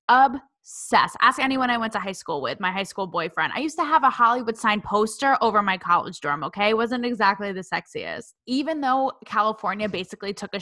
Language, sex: English, female